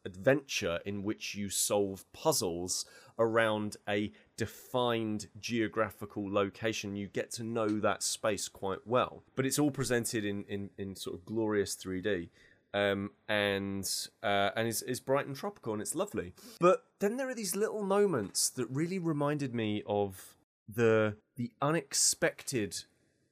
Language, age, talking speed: English, 30-49, 145 wpm